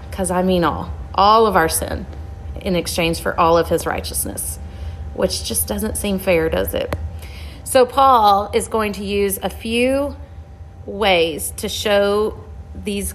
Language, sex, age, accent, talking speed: English, female, 30-49, American, 155 wpm